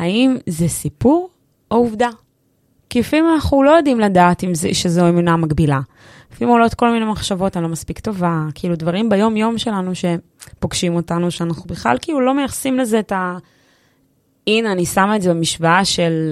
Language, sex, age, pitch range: Hebrew, female, 20-39, 165-225 Hz